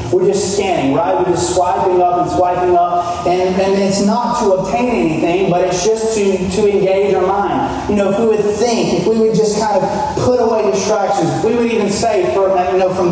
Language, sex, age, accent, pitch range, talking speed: English, male, 30-49, American, 160-205 Hz, 225 wpm